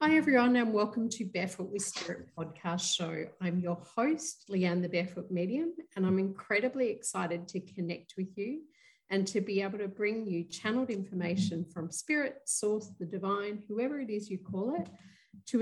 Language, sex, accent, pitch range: English, female, Australian, 170-215 Hz